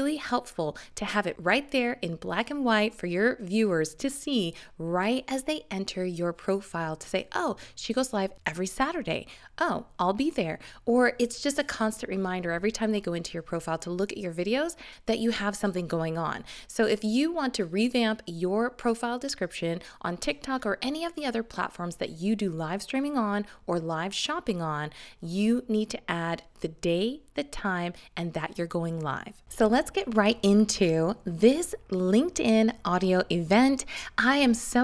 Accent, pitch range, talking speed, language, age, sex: American, 180-245 Hz, 190 wpm, English, 20-39, female